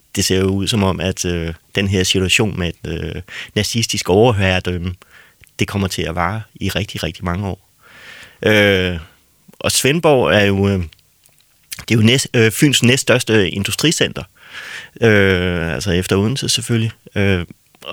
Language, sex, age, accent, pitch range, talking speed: Danish, male, 30-49, native, 95-115 Hz, 150 wpm